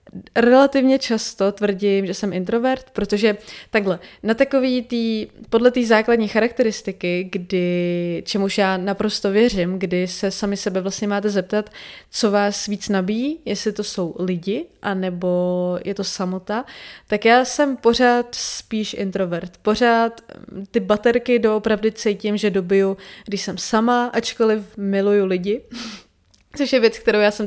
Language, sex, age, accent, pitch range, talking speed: Czech, female, 20-39, native, 190-230 Hz, 135 wpm